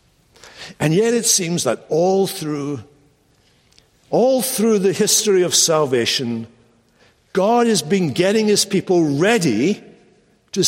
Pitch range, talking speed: 170-230 Hz, 120 wpm